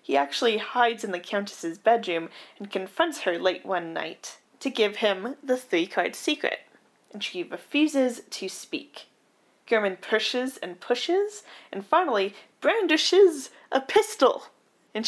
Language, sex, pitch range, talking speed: English, female, 205-300 Hz, 135 wpm